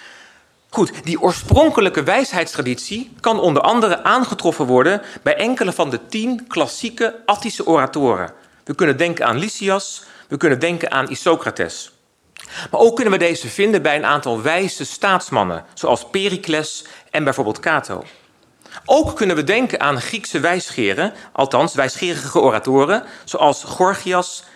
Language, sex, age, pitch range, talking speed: Dutch, male, 40-59, 145-215 Hz, 135 wpm